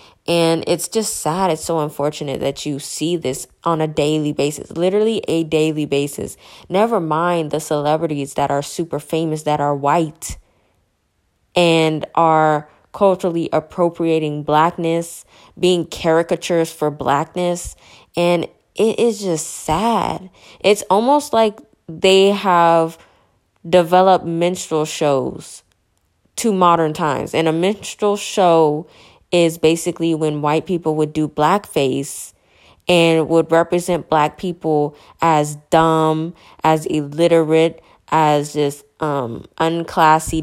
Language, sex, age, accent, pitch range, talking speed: English, female, 10-29, American, 150-180 Hz, 120 wpm